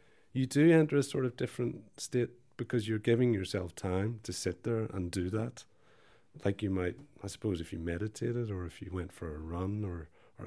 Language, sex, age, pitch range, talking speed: English, male, 30-49, 90-115 Hz, 205 wpm